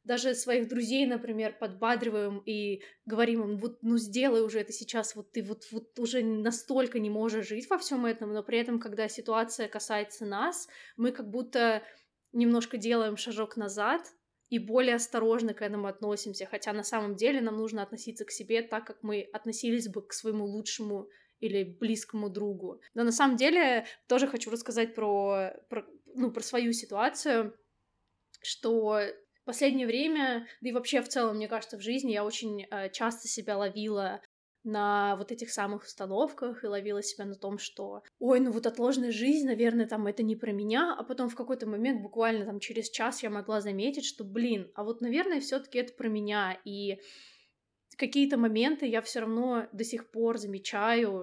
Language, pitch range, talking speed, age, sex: Russian, 210-240 Hz, 175 wpm, 20-39, female